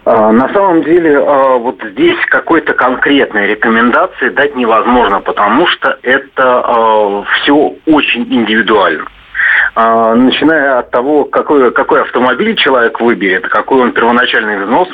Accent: native